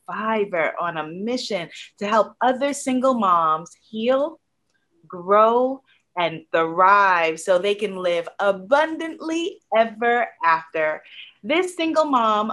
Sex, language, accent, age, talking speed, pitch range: female, English, American, 30-49, 110 wpm, 180-255 Hz